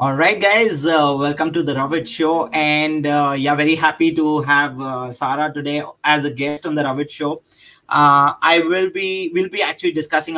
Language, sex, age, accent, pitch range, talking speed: English, male, 20-39, Indian, 135-155 Hz, 195 wpm